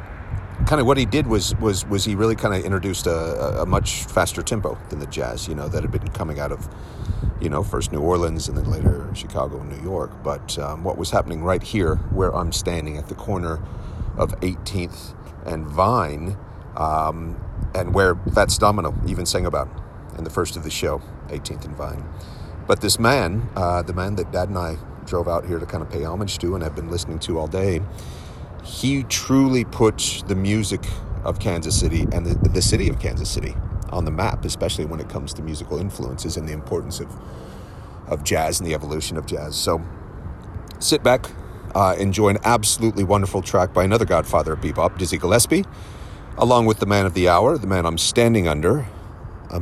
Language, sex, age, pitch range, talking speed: English, male, 40-59, 85-100 Hz, 200 wpm